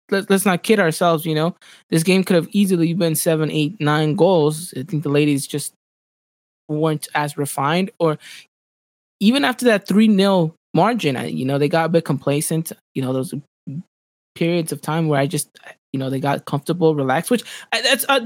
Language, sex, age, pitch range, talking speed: English, male, 20-39, 145-195 Hz, 185 wpm